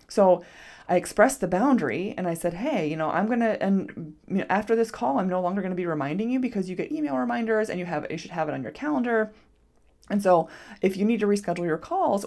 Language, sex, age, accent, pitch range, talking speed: English, female, 20-39, American, 180-235 Hz, 245 wpm